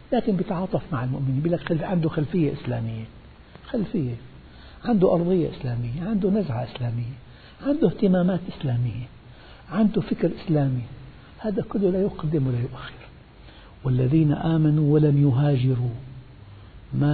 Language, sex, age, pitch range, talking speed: Arabic, male, 60-79, 120-160 Hz, 110 wpm